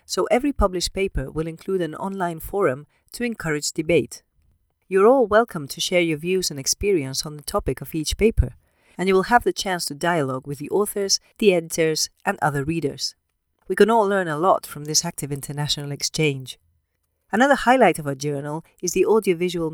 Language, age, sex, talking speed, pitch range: English, 40-59, female, 190 wpm, 150-195 Hz